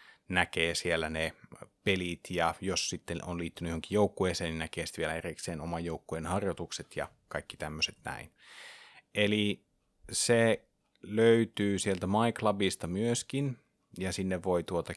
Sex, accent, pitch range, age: male, native, 85-105 Hz, 30-49